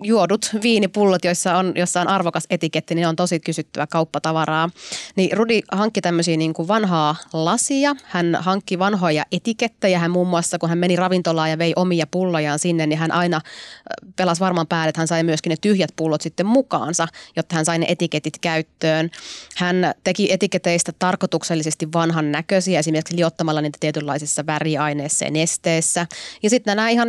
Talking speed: 165 wpm